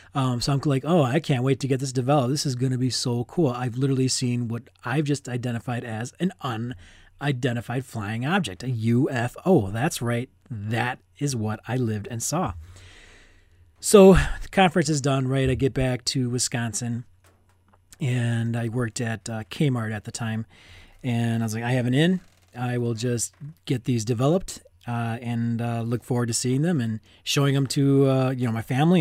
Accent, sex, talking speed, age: American, male, 190 wpm, 30-49